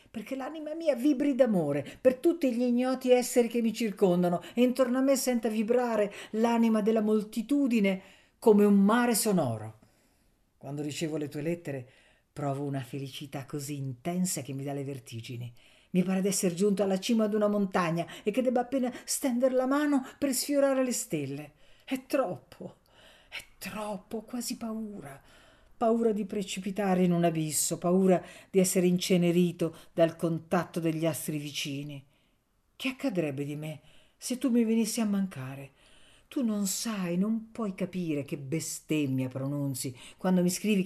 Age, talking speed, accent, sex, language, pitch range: 50-69, 155 wpm, native, female, Italian, 150-225 Hz